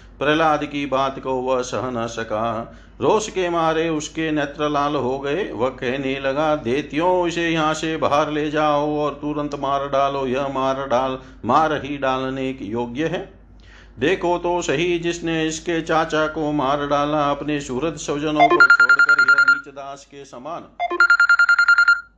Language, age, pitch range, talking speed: Hindi, 50-69, 130-160 Hz, 155 wpm